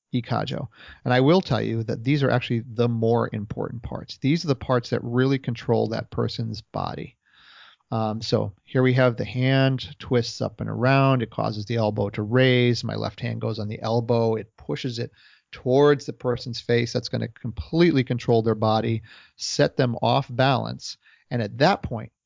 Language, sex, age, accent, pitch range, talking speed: English, male, 40-59, American, 115-130 Hz, 190 wpm